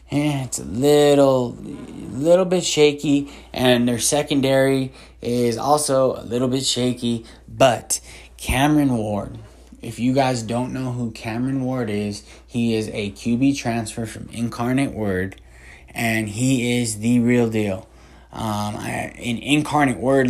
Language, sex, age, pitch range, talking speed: English, male, 20-39, 110-135 Hz, 135 wpm